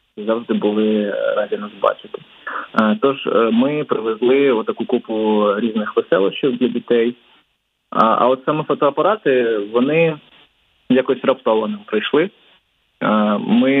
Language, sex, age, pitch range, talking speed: Ukrainian, male, 20-39, 110-135 Hz, 100 wpm